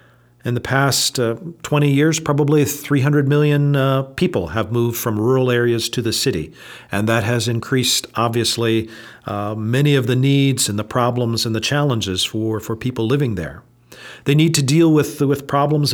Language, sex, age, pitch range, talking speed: English, male, 50-69, 115-145 Hz, 175 wpm